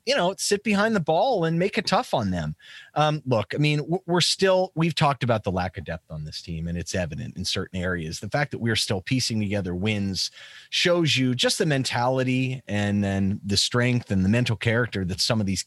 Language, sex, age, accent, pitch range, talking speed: English, male, 30-49, American, 115-170 Hz, 225 wpm